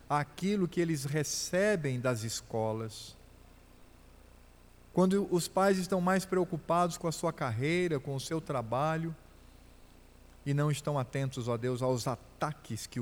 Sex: male